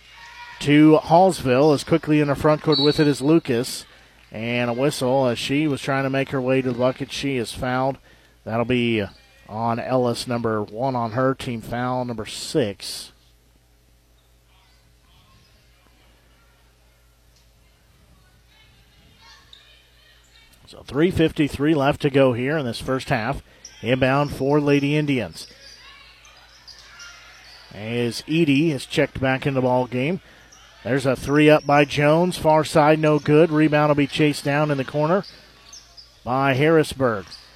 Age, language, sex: 50-69, English, male